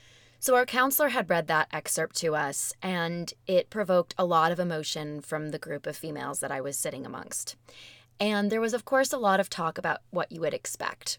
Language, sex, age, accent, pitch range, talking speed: English, female, 20-39, American, 160-190 Hz, 215 wpm